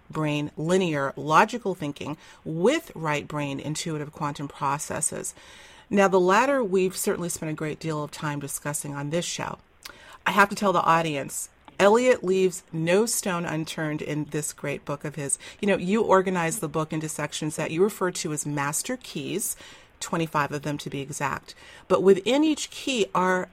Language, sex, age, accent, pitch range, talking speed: English, female, 40-59, American, 150-200 Hz, 175 wpm